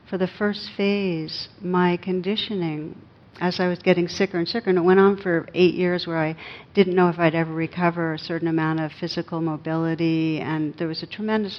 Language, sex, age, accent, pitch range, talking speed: English, female, 60-79, American, 160-185 Hz, 200 wpm